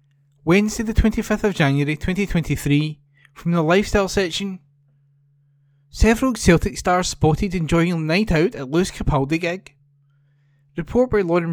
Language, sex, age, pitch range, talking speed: English, male, 20-39, 140-180 Hz, 130 wpm